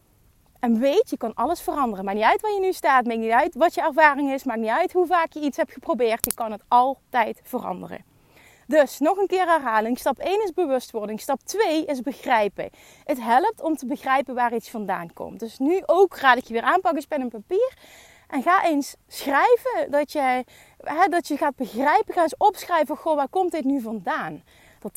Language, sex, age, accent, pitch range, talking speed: Dutch, female, 30-49, Dutch, 230-320 Hz, 215 wpm